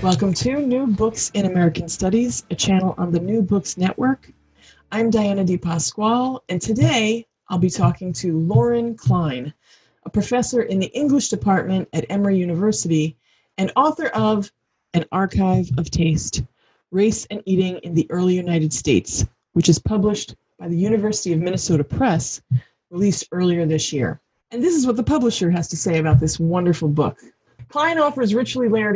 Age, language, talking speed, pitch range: 30-49, English, 165 wpm, 170-210 Hz